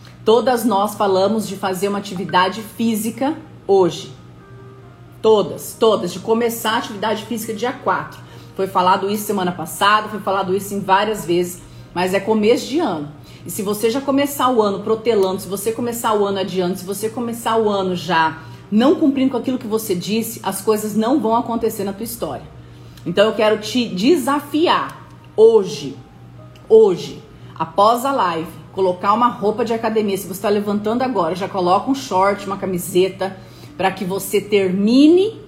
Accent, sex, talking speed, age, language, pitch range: Brazilian, female, 165 wpm, 40-59, Portuguese, 190-225 Hz